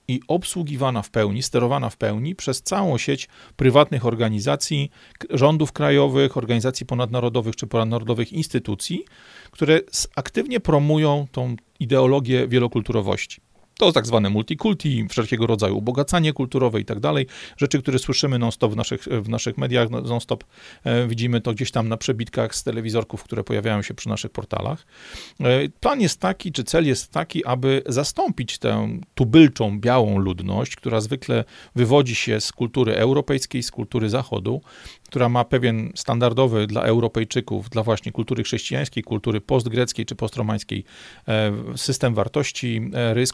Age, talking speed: 40-59, 135 wpm